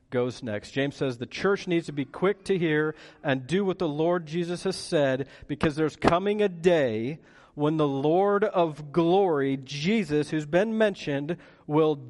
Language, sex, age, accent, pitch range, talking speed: English, male, 40-59, American, 135-180 Hz, 175 wpm